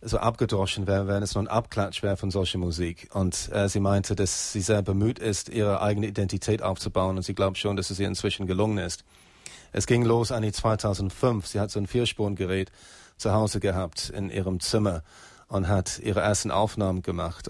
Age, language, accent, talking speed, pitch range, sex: 30-49, German, German, 195 wpm, 95-110 Hz, male